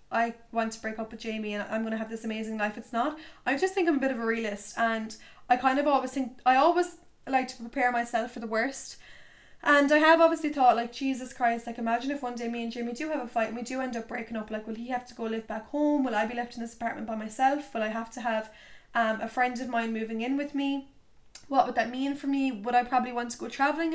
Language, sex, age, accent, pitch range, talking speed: English, female, 10-29, Irish, 225-270 Hz, 280 wpm